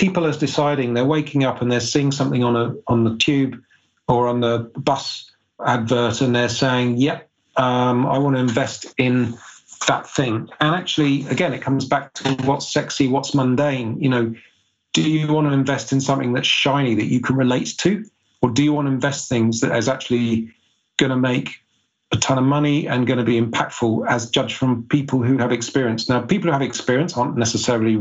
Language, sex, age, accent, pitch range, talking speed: English, male, 40-59, British, 120-140 Hz, 205 wpm